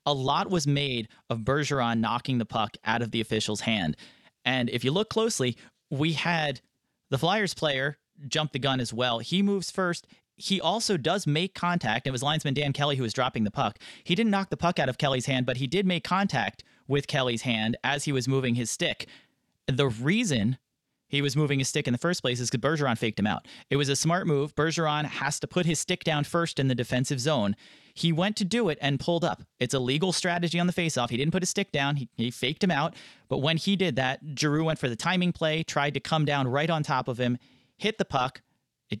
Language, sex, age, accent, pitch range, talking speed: English, male, 30-49, American, 130-165 Hz, 235 wpm